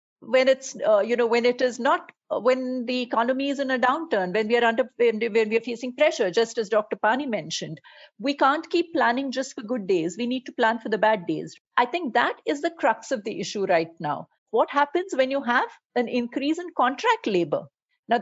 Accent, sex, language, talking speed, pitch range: Indian, female, English, 225 wpm, 215-280 Hz